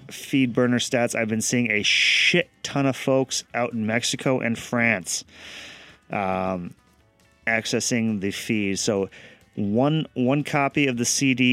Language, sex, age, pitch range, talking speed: English, male, 30-49, 95-130 Hz, 140 wpm